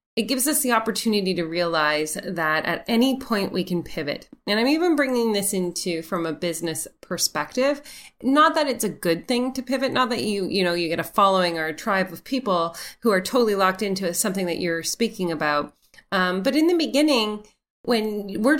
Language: English